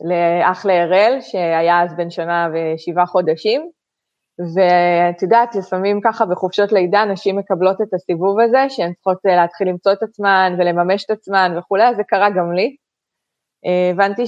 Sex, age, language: female, 20-39, Hebrew